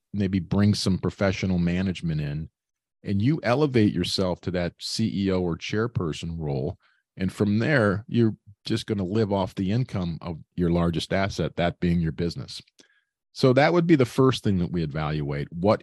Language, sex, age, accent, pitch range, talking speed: English, male, 40-59, American, 85-110 Hz, 175 wpm